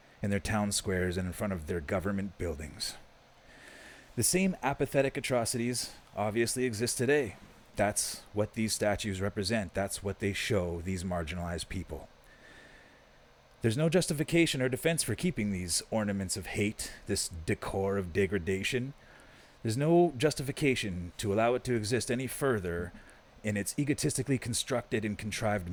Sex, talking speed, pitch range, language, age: male, 140 wpm, 95-125 Hz, English, 30-49